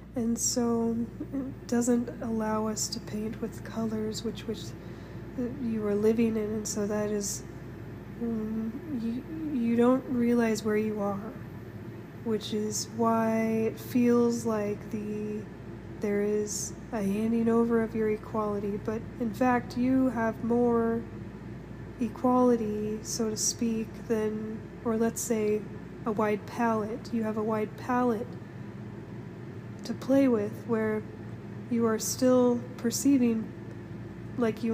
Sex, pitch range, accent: female, 215-240 Hz, American